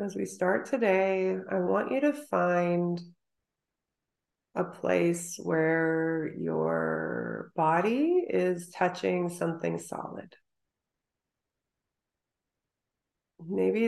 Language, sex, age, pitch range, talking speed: English, female, 30-49, 165-195 Hz, 80 wpm